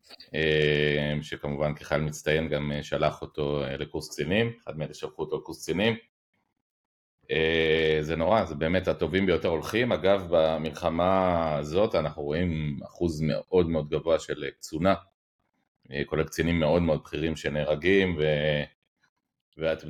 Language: Hebrew